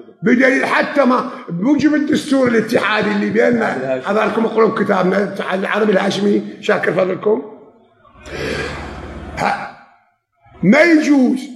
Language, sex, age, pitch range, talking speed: Arabic, male, 50-69, 210-260 Hz, 95 wpm